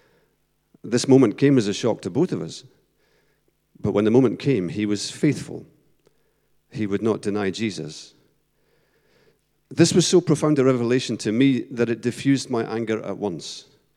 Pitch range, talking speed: 100-130 Hz, 165 wpm